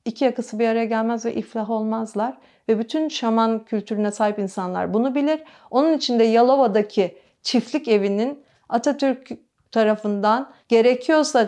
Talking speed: 130 wpm